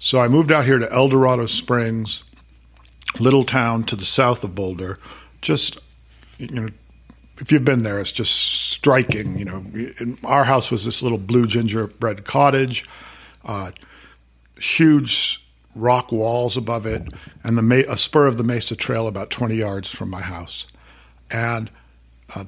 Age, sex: 50-69, male